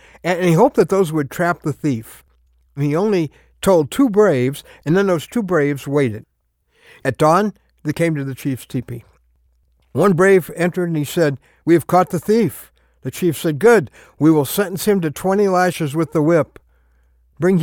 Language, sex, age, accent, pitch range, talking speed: English, male, 60-79, American, 100-150 Hz, 185 wpm